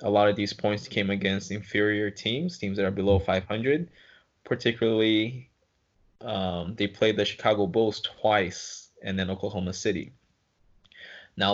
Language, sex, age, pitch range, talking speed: English, male, 20-39, 100-110 Hz, 140 wpm